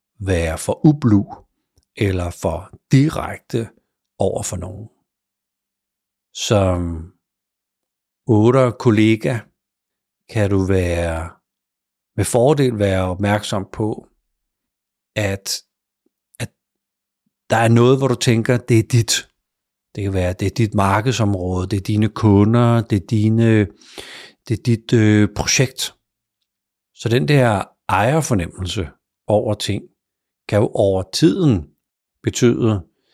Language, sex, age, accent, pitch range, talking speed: Danish, male, 60-79, native, 95-115 Hz, 115 wpm